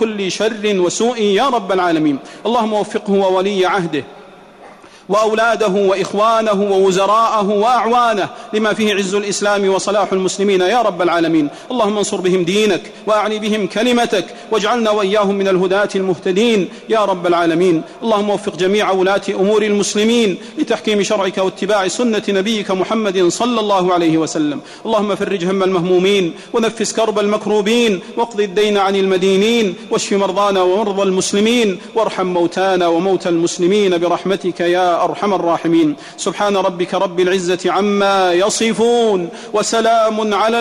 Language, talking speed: Arabic, 125 wpm